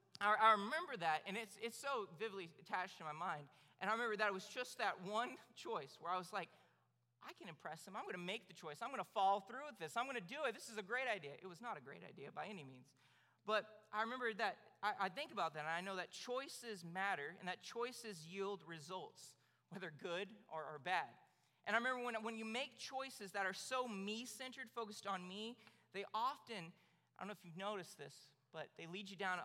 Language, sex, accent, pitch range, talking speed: English, male, American, 165-220 Hz, 235 wpm